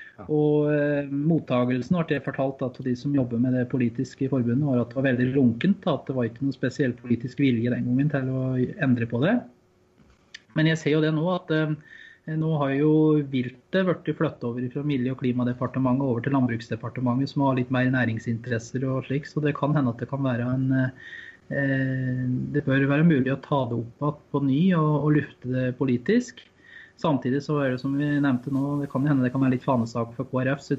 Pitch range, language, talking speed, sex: 125-145 Hz, English, 215 wpm, male